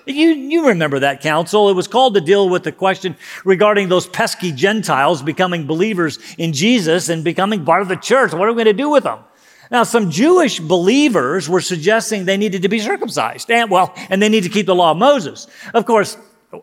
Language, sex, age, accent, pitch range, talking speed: English, male, 50-69, American, 165-230 Hz, 215 wpm